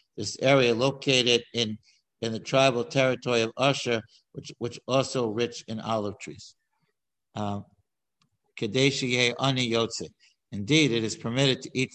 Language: English